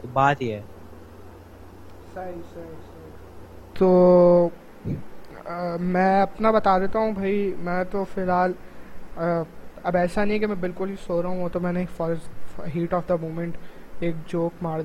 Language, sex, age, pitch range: Urdu, male, 20-39, 170-195 Hz